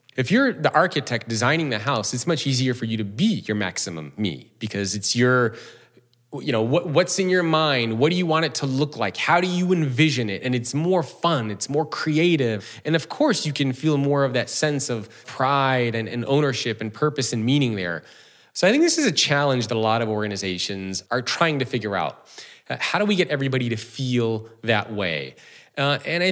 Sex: male